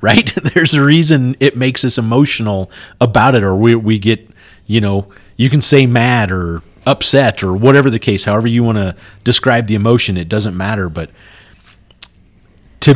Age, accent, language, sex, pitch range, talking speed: 40-59, American, English, male, 105-130 Hz, 175 wpm